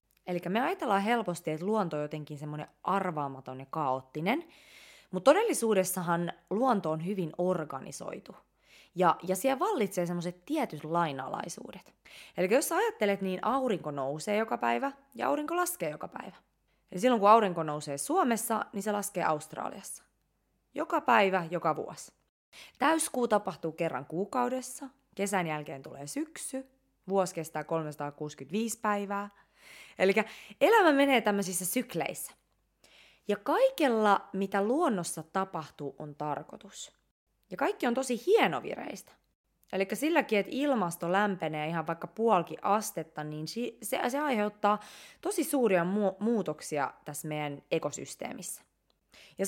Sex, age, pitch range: female, 20-39, 165-245 Hz